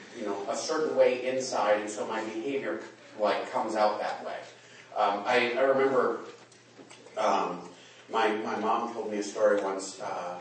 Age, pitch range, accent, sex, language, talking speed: 30-49, 105-135 Hz, American, male, English, 160 wpm